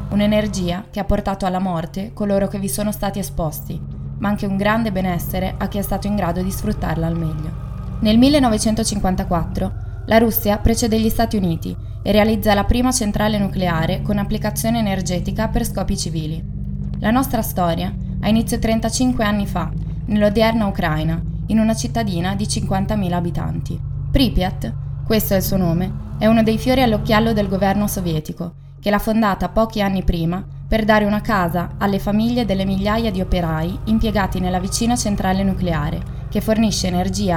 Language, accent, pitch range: Italian, native, 160-215 Hz